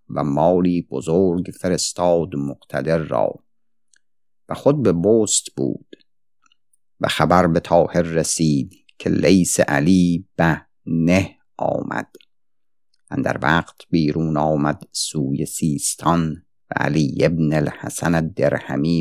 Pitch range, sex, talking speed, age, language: 80-95 Hz, male, 105 wpm, 50-69, Persian